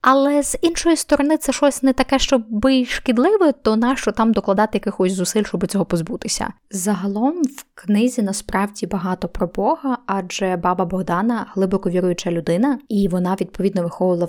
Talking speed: 155 wpm